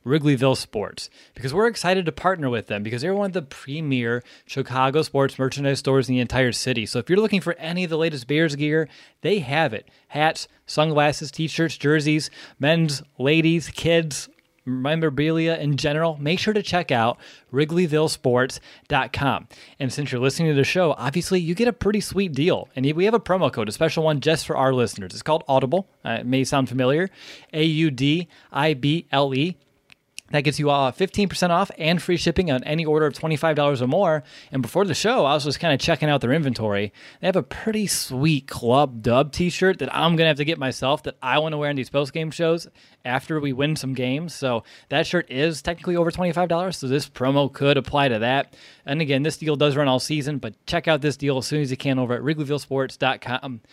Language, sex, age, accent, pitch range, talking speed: English, male, 20-39, American, 135-165 Hz, 205 wpm